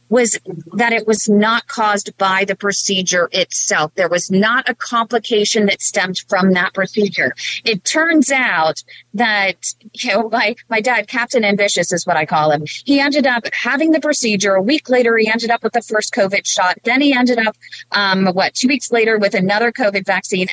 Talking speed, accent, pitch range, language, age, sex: 195 wpm, American, 190-240 Hz, English, 30-49, female